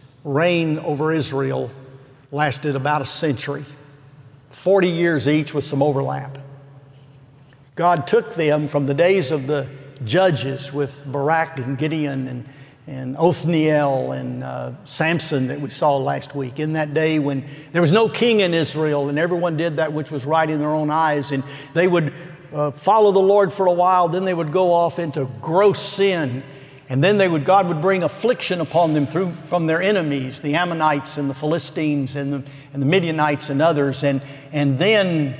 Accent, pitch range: American, 140-175 Hz